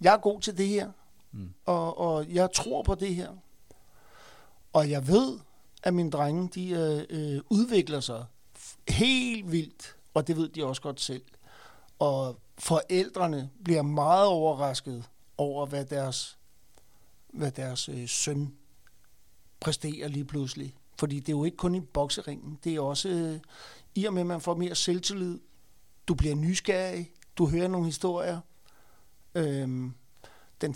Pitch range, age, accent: 140-175 Hz, 60-79, native